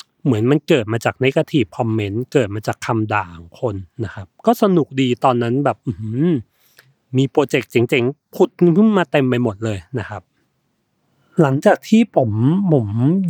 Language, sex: Thai, male